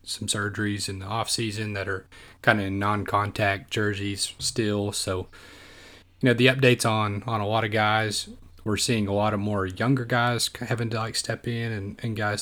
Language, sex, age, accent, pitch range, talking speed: English, male, 30-49, American, 100-115 Hz, 200 wpm